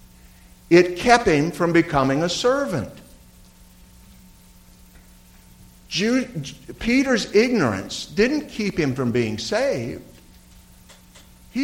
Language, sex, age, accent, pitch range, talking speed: English, male, 60-79, American, 110-160 Hz, 80 wpm